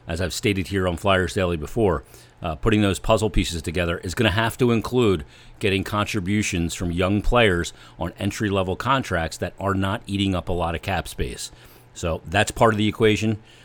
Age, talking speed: 40-59, 195 wpm